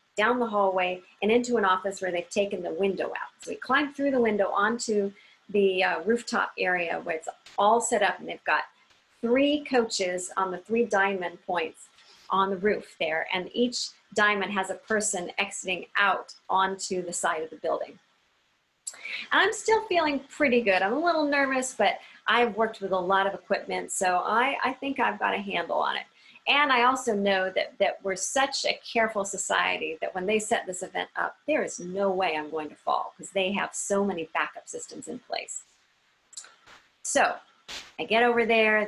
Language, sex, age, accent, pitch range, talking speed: English, female, 40-59, American, 185-230 Hz, 190 wpm